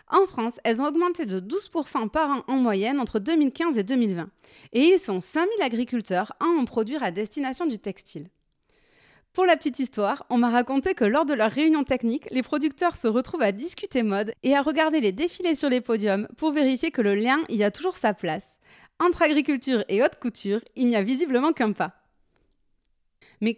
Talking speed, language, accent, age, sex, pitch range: 195 wpm, French, French, 30-49, female, 220-310 Hz